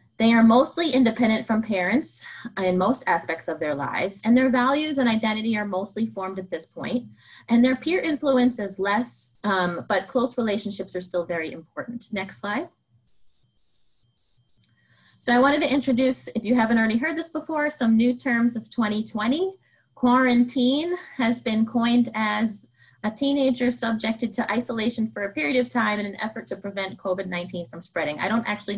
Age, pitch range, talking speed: 20-39, 180-240 Hz, 170 wpm